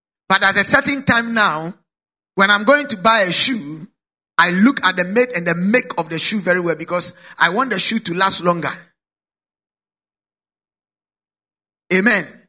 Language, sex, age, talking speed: English, male, 50-69, 170 wpm